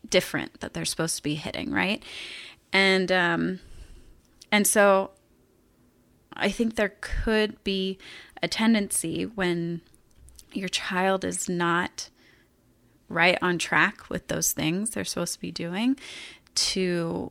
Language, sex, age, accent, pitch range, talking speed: English, female, 30-49, American, 170-210 Hz, 125 wpm